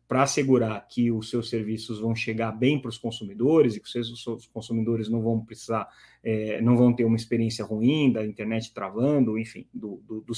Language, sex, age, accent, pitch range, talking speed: Portuguese, male, 30-49, Brazilian, 115-135 Hz, 200 wpm